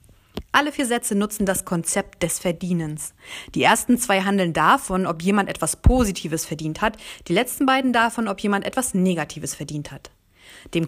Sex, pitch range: female, 170-250 Hz